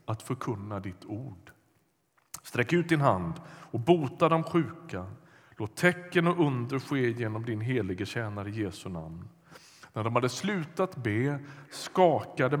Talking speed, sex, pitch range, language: 140 wpm, male, 110-160 Hz, Swedish